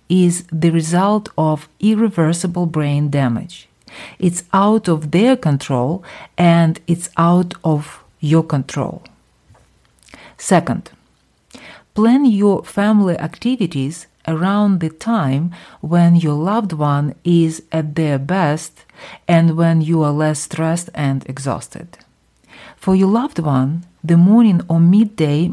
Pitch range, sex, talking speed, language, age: 150-185 Hz, female, 120 wpm, English, 40-59